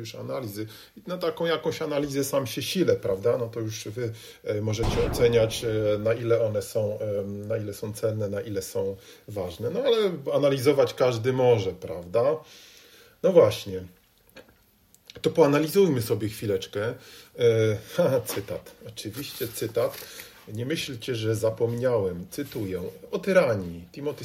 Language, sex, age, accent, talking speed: Polish, male, 40-59, native, 125 wpm